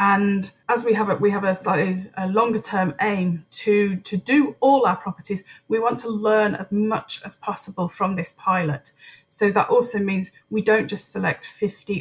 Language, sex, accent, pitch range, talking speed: English, female, British, 185-215 Hz, 175 wpm